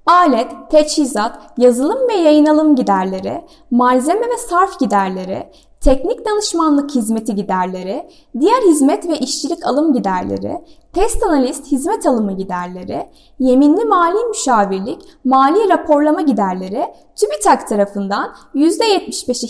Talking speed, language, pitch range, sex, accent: 110 wpm, Turkish, 240-365 Hz, female, native